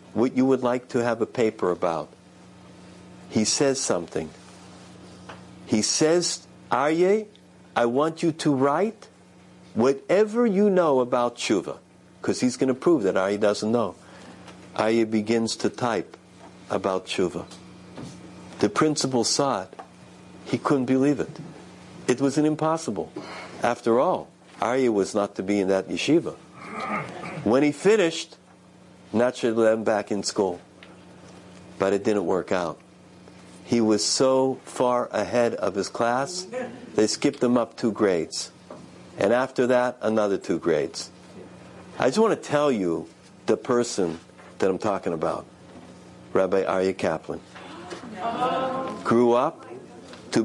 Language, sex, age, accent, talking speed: English, male, 60-79, American, 135 wpm